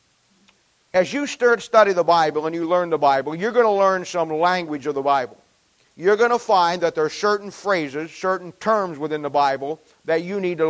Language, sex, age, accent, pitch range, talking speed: English, male, 50-69, American, 165-205 Hz, 215 wpm